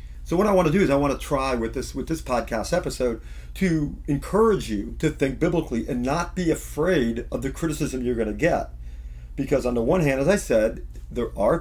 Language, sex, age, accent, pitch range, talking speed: English, male, 40-59, American, 110-165 Hz, 225 wpm